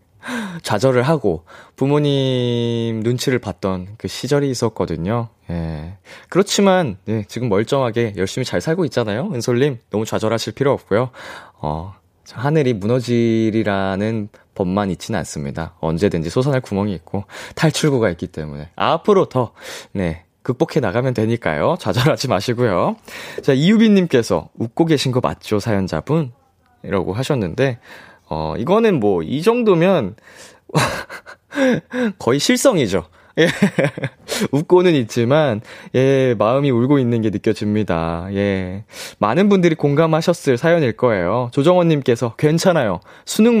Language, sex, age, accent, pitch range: Korean, male, 20-39, native, 100-160 Hz